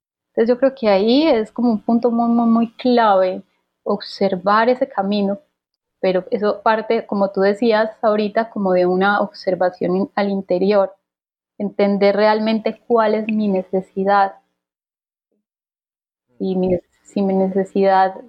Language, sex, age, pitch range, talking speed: Spanish, female, 20-39, 195-225 Hz, 130 wpm